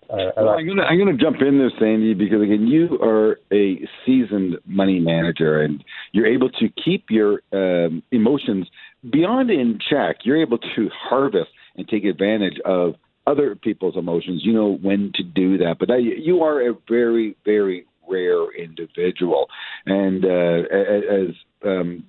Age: 50-69